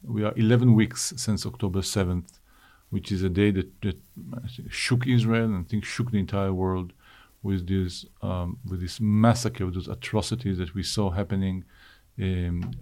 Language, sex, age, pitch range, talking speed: Greek, male, 50-69, 95-115 Hz, 175 wpm